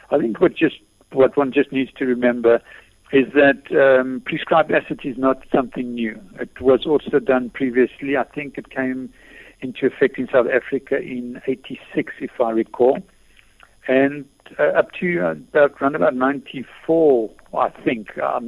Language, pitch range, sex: English, 115-140 Hz, male